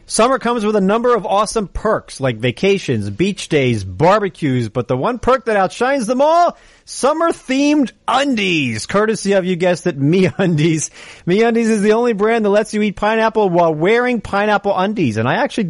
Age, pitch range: 40-59, 160-230 Hz